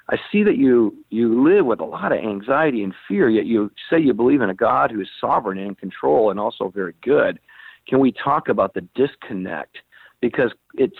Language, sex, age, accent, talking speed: English, male, 50-69, American, 215 wpm